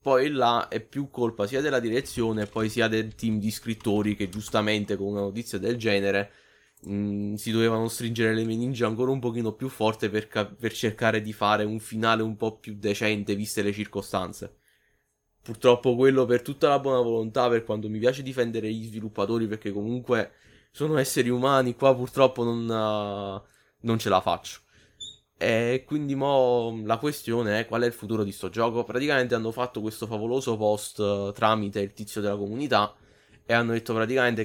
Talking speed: 180 wpm